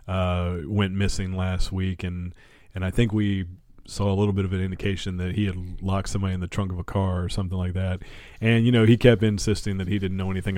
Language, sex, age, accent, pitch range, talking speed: English, male, 30-49, American, 90-105 Hz, 245 wpm